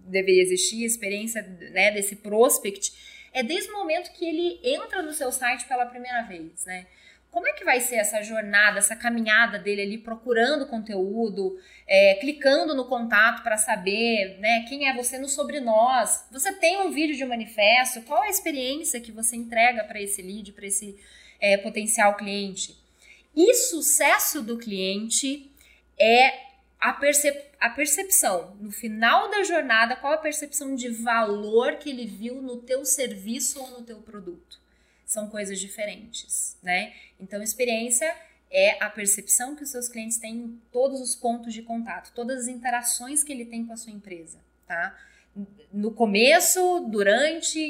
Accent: Brazilian